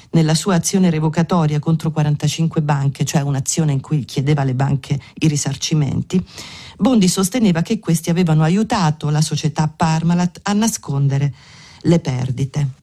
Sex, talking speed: female, 135 wpm